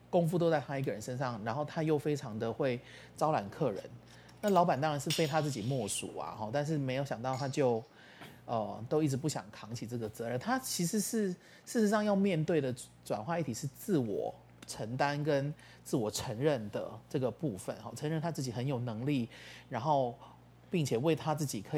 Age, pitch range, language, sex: 30-49, 115-155 Hz, Chinese, male